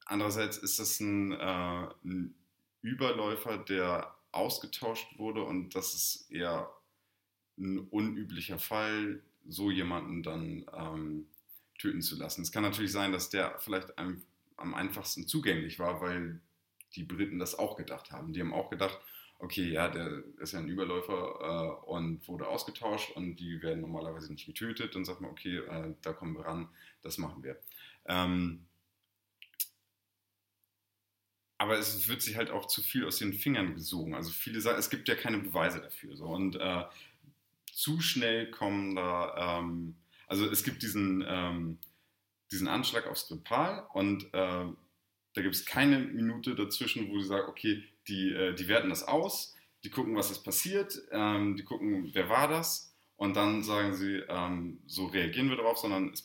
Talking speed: 165 wpm